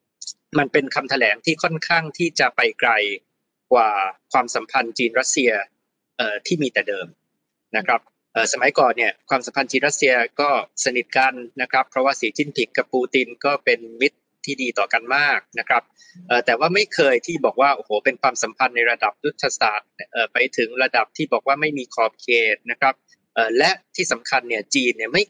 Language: Thai